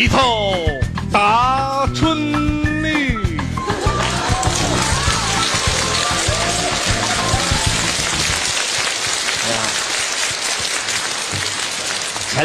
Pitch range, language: 125-180 Hz, Chinese